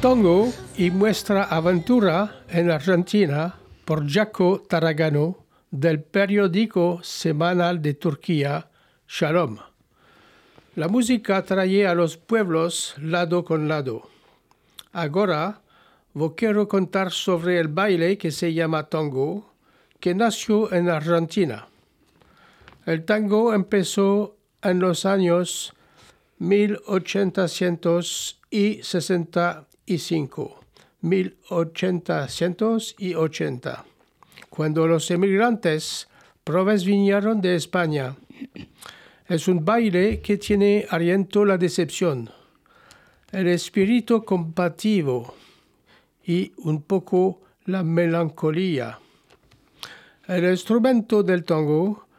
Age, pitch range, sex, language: 60-79, 165-200 Hz, male, French